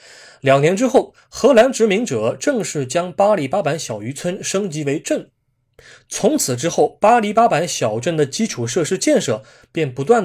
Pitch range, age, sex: 130-200 Hz, 20-39, male